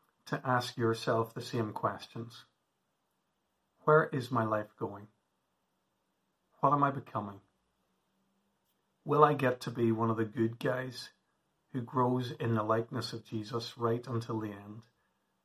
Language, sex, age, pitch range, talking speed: English, male, 40-59, 115-130 Hz, 140 wpm